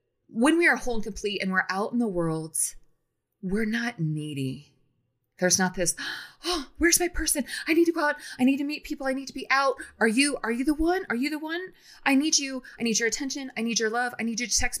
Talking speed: 255 wpm